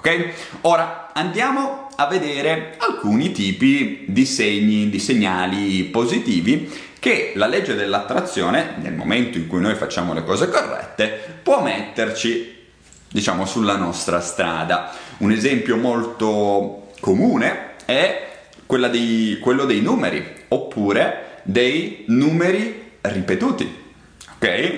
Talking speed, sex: 105 wpm, male